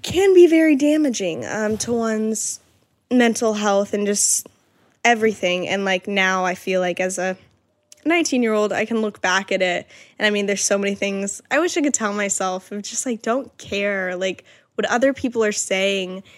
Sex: female